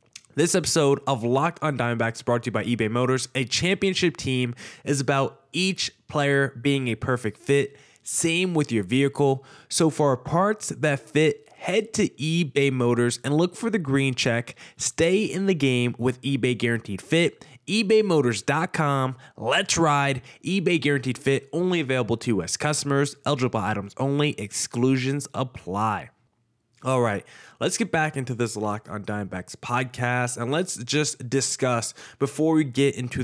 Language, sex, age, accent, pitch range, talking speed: English, male, 20-39, American, 120-155 Hz, 155 wpm